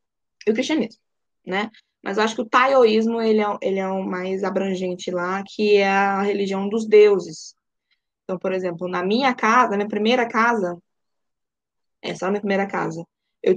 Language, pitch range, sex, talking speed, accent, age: Portuguese, 190-230 Hz, female, 175 wpm, Brazilian, 10-29